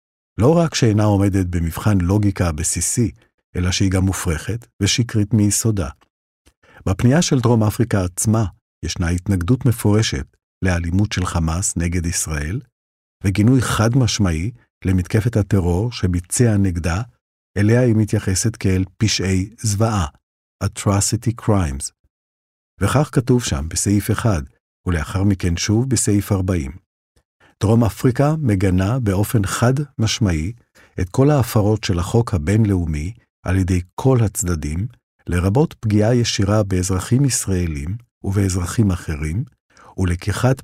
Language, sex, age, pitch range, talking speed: Hebrew, male, 50-69, 90-115 Hz, 110 wpm